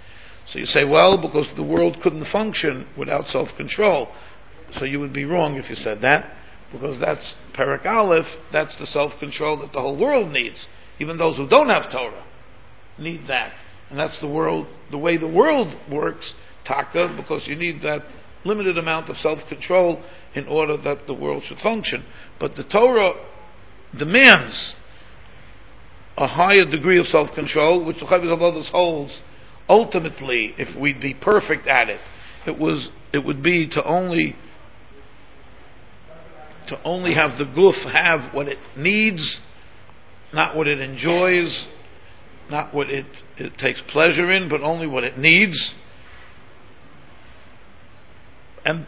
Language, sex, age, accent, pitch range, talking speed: English, male, 50-69, American, 145-175 Hz, 145 wpm